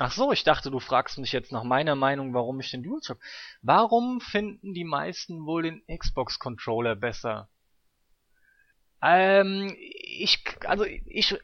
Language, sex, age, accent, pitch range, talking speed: German, male, 20-39, German, 140-205 Hz, 145 wpm